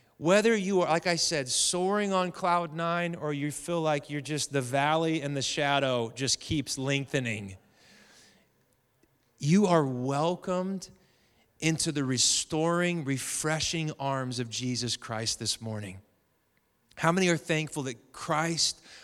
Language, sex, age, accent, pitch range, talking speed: English, male, 30-49, American, 130-165 Hz, 135 wpm